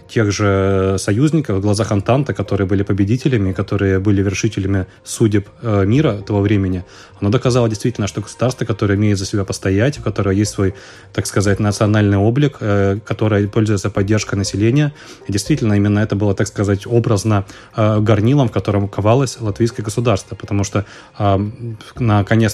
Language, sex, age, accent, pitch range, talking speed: Russian, male, 20-39, native, 100-115 Hz, 145 wpm